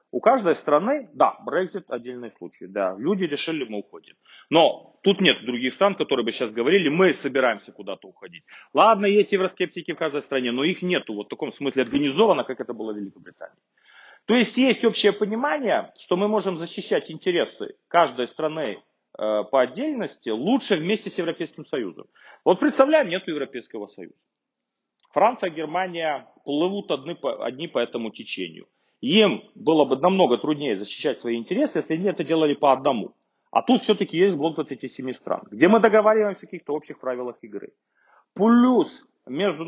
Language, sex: Ukrainian, male